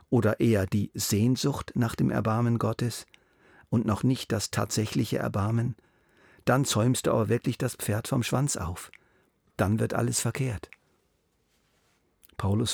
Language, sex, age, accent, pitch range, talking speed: German, male, 50-69, German, 95-125 Hz, 135 wpm